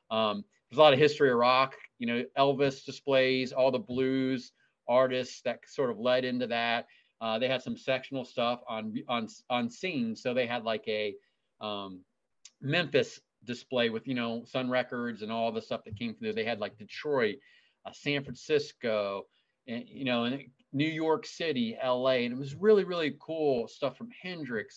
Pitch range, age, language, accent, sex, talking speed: 120-155 Hz, 30-49, English, American, male, 185 wpm